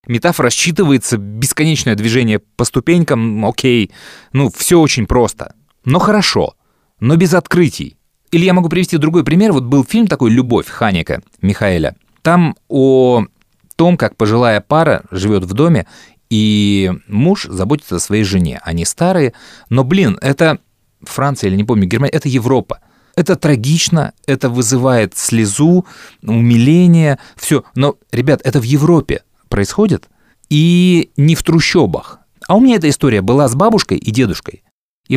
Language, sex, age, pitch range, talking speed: Russian, male, 30-49, 115-165 Hz, 145 wpm